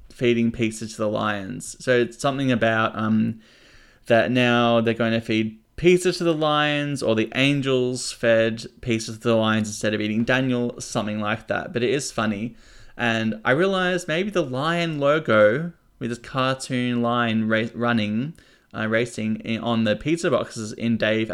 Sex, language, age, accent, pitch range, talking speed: male, English, 20-39, Australian, 110-135 Hz, 170 wpm